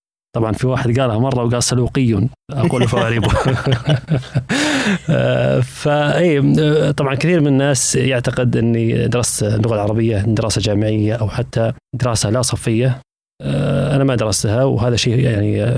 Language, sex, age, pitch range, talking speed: Arabic, male, 20-39, 105-130 Hz, 120 wpm